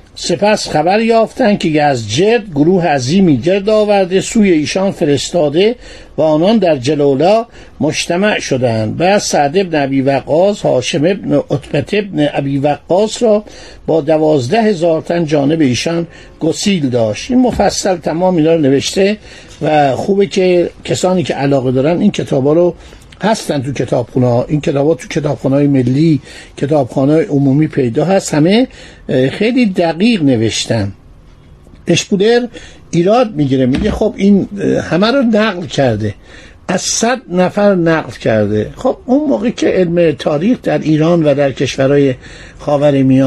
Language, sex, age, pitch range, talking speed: Persian, male, 50-69, 140-200 Hz, 140 wpm